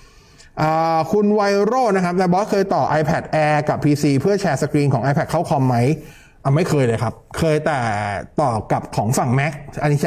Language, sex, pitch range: Thai, male, 140-190 Hz